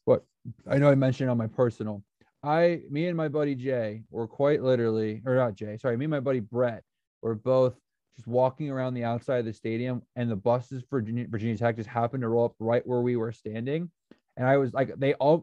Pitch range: 115-135 Hz